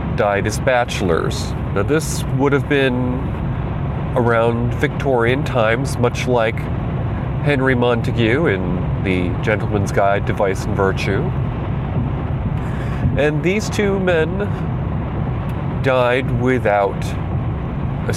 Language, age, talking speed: English, 40-59, 100 wpm